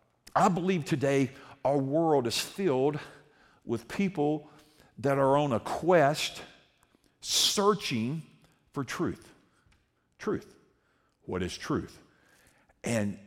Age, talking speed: 50-69, 100 wpm